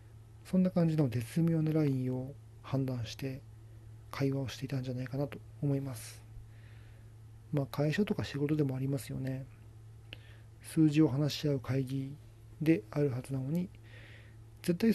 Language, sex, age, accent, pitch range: Japanese, male, 40-59, native, 110-140 Hz